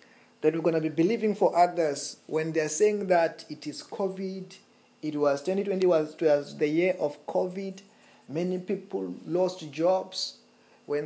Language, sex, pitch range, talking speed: English, male, 155-195 Hz, 150 wpm